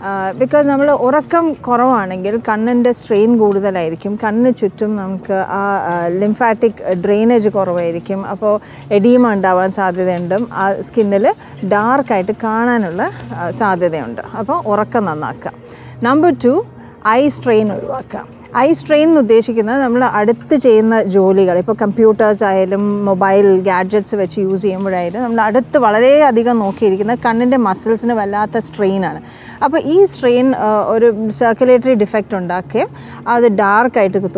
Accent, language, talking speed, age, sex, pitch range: native, Malayalam, 110 wpm, 30-49, female, 195-250 Hz